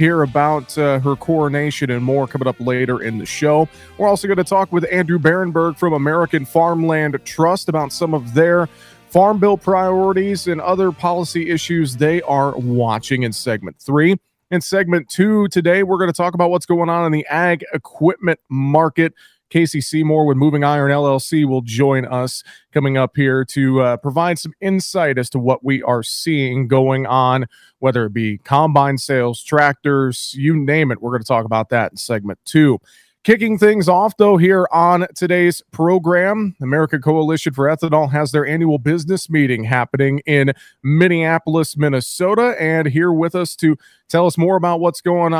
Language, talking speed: English, 175 wpm